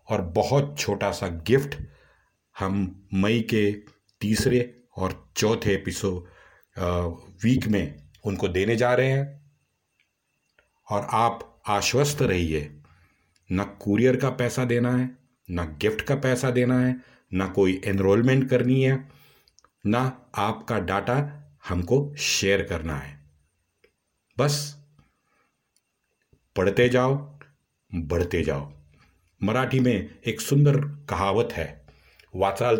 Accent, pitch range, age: native, 90-130 Hz, 50-69